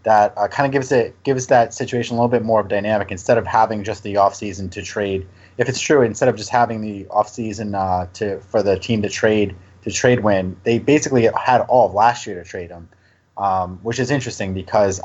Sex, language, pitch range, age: male, English, 95-115 Hz, 30-49